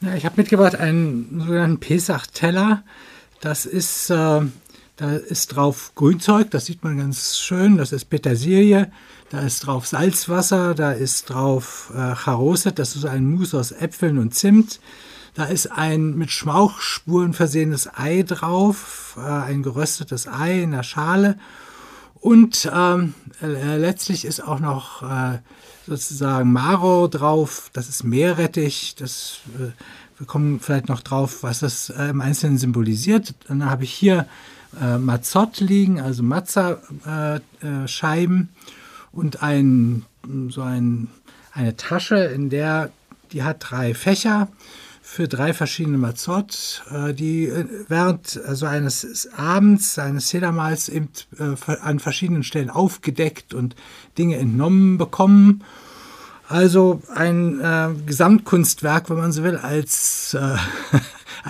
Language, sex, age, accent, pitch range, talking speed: German, male, 60-79, German, 135-180 Hz, 130 wpm